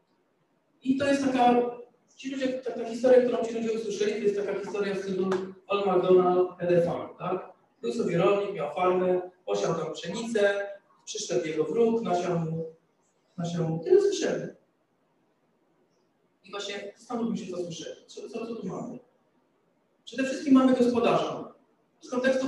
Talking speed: 140 wpm